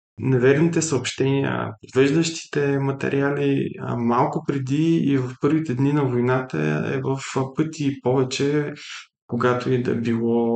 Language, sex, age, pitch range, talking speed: Bulgarian, male, 20-39, 120-145 Hz, 115 wpm